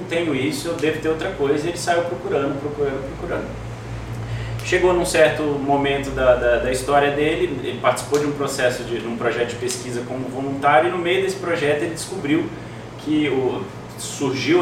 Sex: male